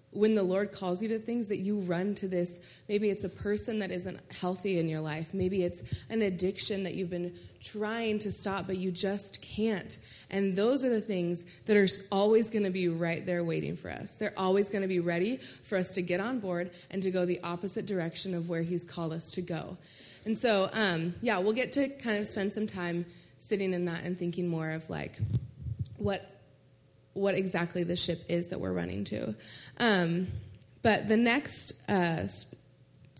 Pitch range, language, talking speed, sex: 170-210 Hz, English, 205 wpm, female